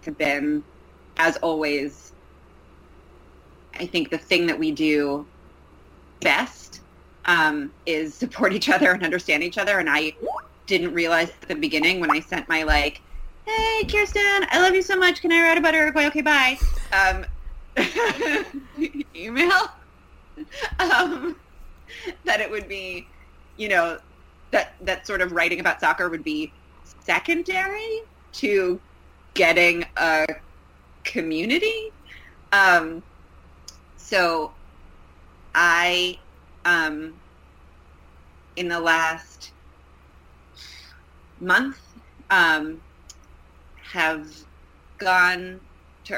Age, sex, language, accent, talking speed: 30-49, female, English, American, 105 wpm